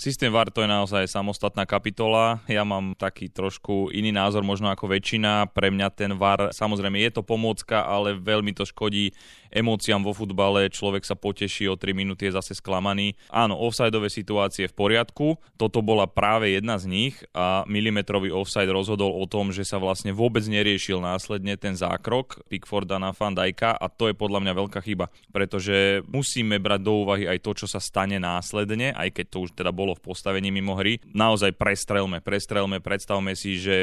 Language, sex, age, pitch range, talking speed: Slovak, male, 20-39, 95-105 Hz, 180 wpm